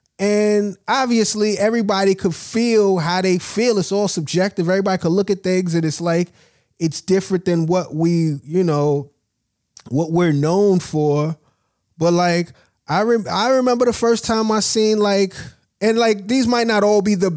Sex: male